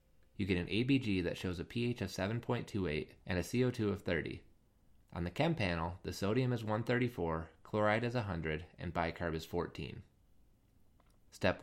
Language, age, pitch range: English, 20-39, 85-110 Hz